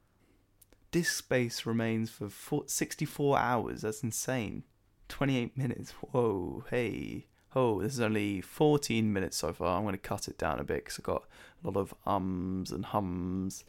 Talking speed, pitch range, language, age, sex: 160 wpm, 100-125 Hz, English, 20-39, male